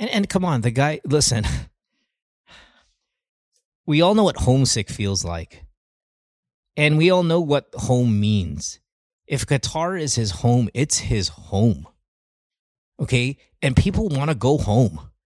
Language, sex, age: English, male, 30-49